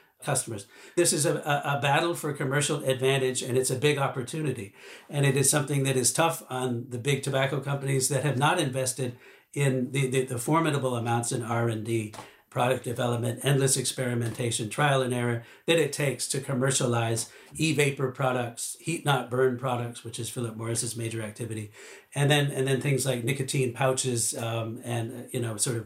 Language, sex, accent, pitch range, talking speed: English, male, American, 125-150 Hz, 180 wpm